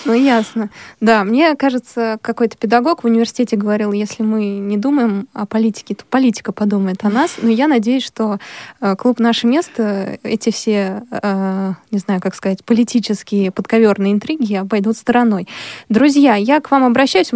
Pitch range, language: 210-245 Hz, Russian